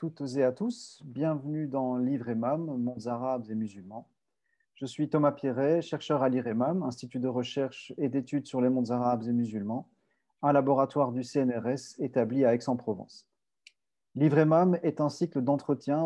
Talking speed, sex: 170 wpm, male